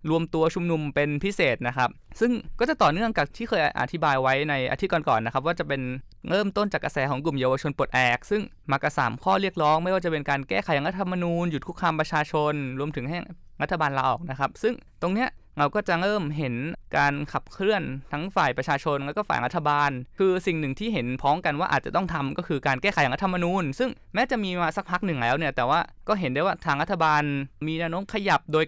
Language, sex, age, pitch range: Thai, male, 20-39, 145-190 Hz